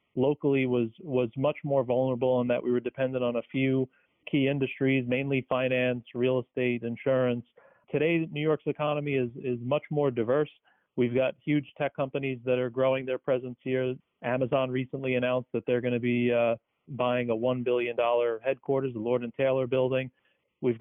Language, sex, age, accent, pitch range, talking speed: English, male, 40-59, American, 120-140 Hz, 175 wpm